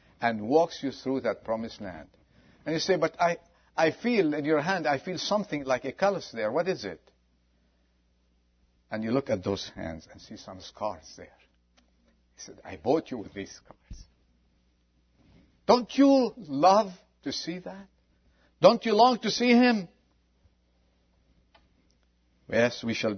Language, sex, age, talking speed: English, male, 50-69, 160 wpm